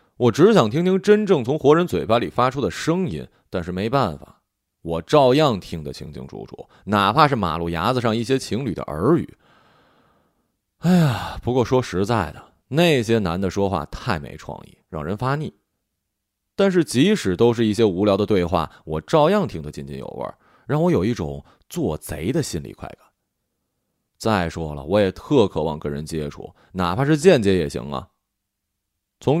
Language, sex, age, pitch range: Chinese, male, 20-39, 95-135 Hz